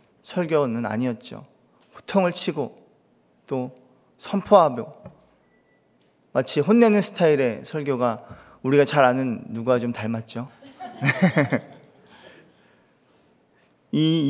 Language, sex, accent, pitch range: Korean, male, native, 135-195 Hz